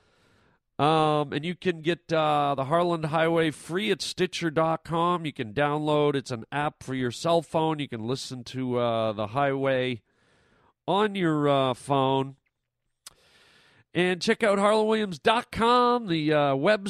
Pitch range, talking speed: 135-180 Hz, 140 wpm